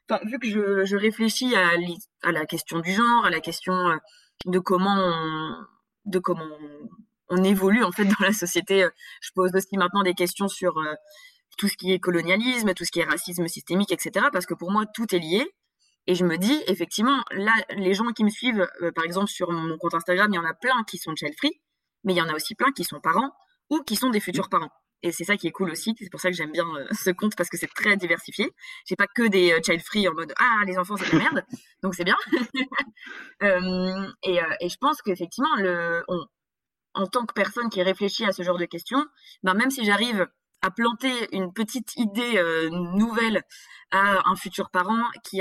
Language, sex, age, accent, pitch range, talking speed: French, female, 20-39, French, 175-220 Hz, 220 wpm